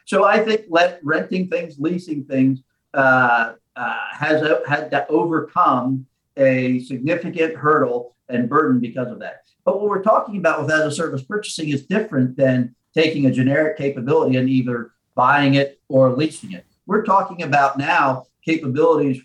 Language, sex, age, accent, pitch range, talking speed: English, male, 50-69, American, 125-165 Hz, 155 wpm